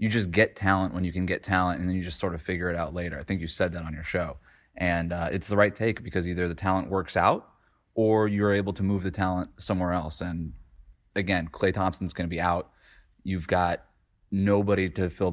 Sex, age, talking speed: male, 20-39, 240 wpm